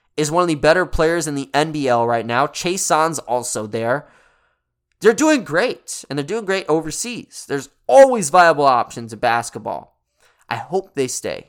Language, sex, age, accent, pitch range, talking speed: English, male, 20-39, American, 120-155 Hz, 170 wpm